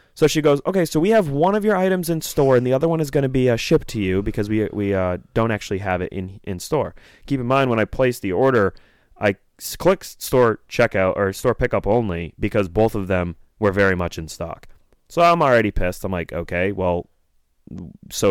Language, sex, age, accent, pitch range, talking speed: English, male, 20-39, American, 100-140 Hz, 230 wpm